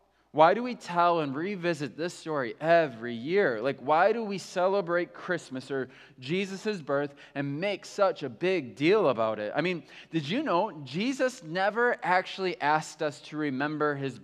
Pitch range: 140-205 Hz